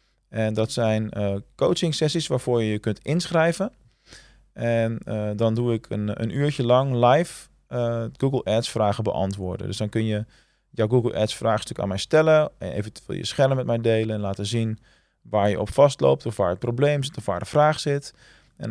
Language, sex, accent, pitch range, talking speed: Dutch, male, Dutch, 105-135 Hz, 195 wpm